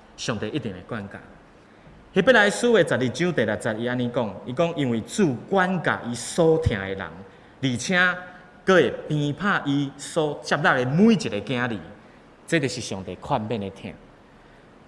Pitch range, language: 110-170 Hz, Chinese